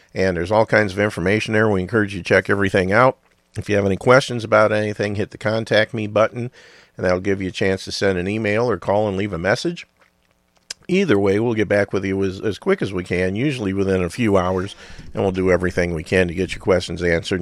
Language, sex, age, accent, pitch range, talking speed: English, male, 50-69, American, 90-110 Hz, 245 wpm